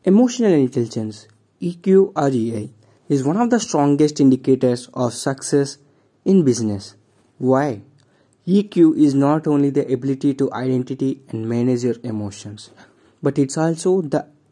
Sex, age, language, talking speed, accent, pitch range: male, 20-39, English, 130 wpm, Indian, 125-165 Hz